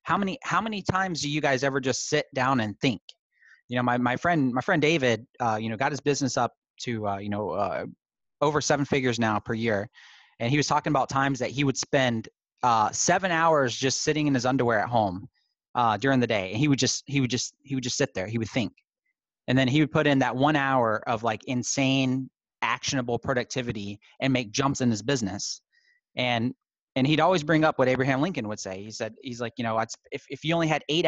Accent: American